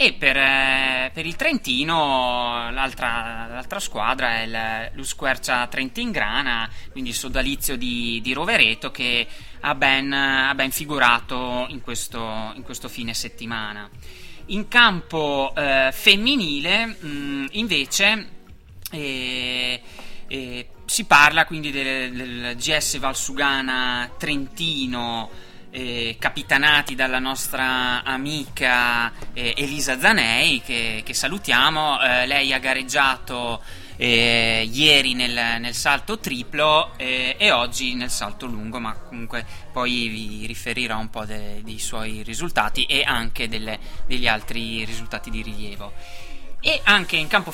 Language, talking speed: Italian, 120 wpm